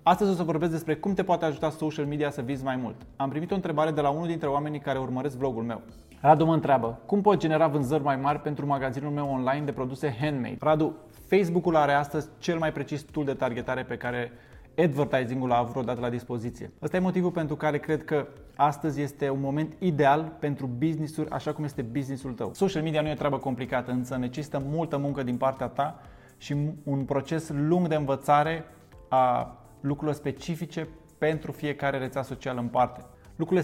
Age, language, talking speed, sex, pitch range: 20-39, Romanian, 200 wpm, male, 135-155 Hz